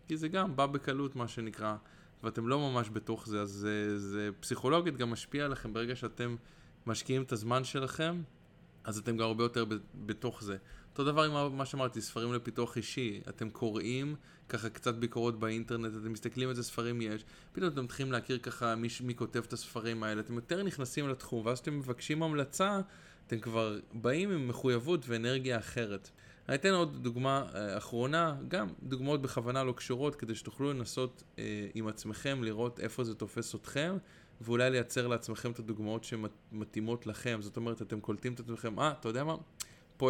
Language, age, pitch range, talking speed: Hebrew, 20-39, 110-135 Hz, 175 wpm